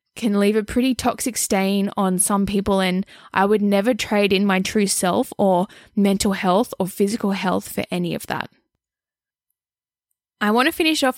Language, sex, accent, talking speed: English, female, Australian, 175 wpm